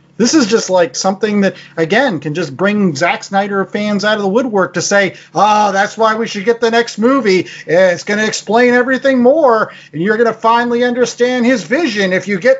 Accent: American